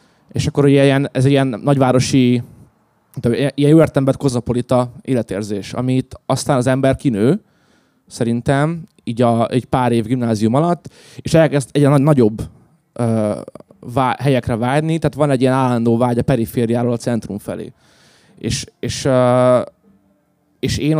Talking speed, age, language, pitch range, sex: 140 wpm, 20-39, Hungarian, 115-135 Hz, male